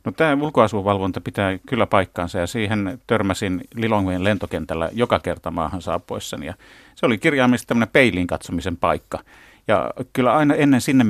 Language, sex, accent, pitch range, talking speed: Finnish, male, native, 90-110 Hz, 145 wpm